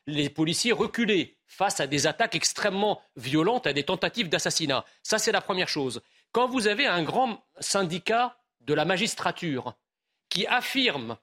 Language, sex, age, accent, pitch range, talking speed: French, male, 40-59, French, 160-230 Hz, 155 wpm